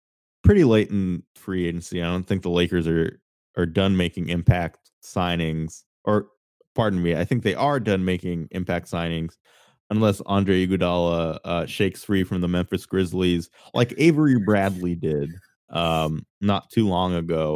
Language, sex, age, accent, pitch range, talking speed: English, male, 20-39, American, 85-100 Hz, 155 wpm